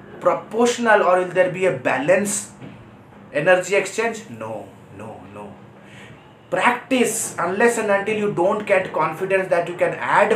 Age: 30-49